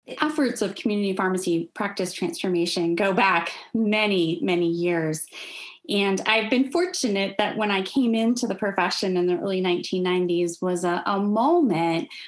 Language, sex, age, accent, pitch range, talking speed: English, female, 20-39, American, 185-230 Hz, 145 wpm